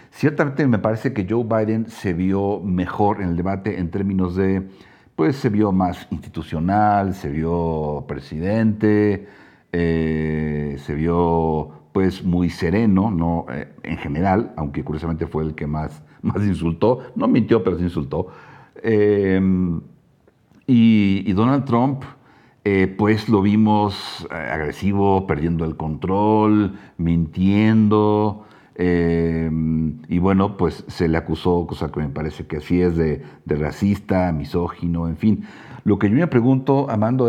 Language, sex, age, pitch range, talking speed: Spanish, male, 50-69, 80-105 Hz, 140 wpm